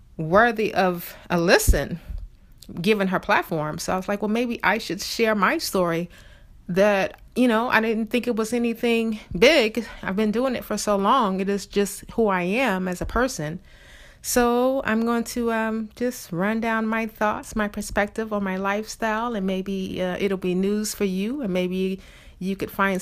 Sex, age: female, 30-49